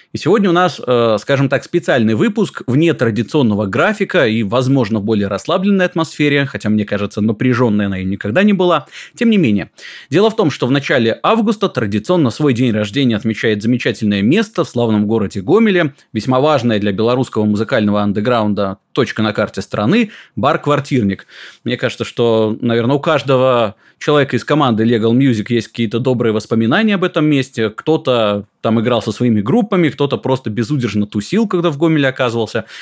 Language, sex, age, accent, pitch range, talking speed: Russian, male, 20-39, native, 110-155 Hz, 165 wpm